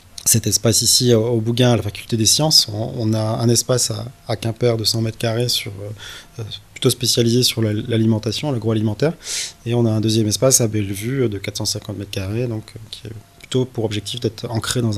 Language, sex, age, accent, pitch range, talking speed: French, male, 20-39, French, 105-125 Hz, 185 wpm